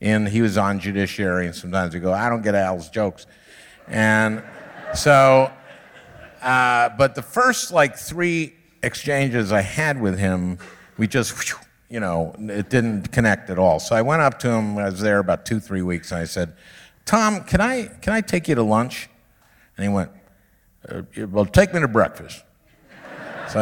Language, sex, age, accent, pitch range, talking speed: English, male, 50-69, American, 95-130 Hz, 180 wpm